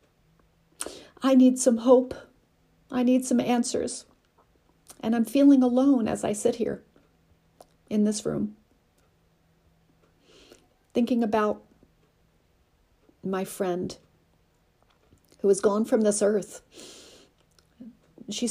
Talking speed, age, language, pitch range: 95 wpm, 40-59, English, 185-230 Hz